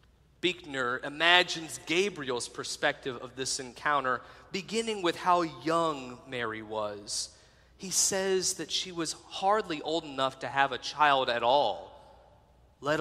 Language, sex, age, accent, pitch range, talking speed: English, male, 30-49, American, 120-170 Hz, 130 wpm